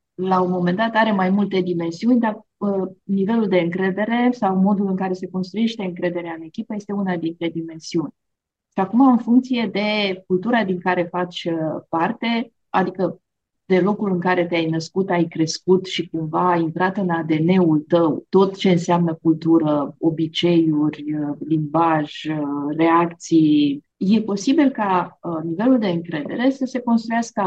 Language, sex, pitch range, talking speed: Romanian, female, 160-195 Hz, 150 wpm